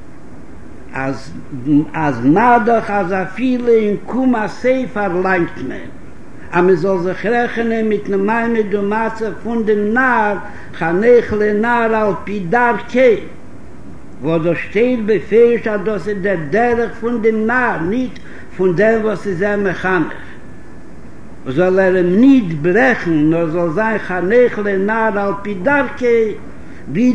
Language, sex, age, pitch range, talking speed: Hebrew, male, 60-79, 195-240 Hz, 100 wpm